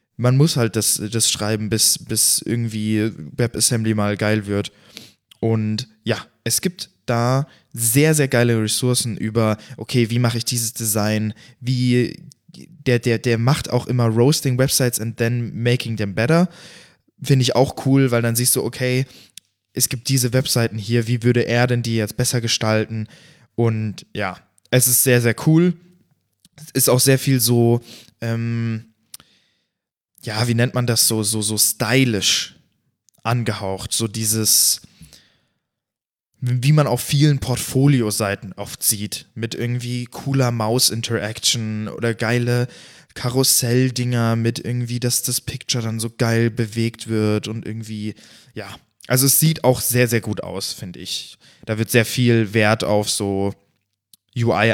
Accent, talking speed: German, 150 wpm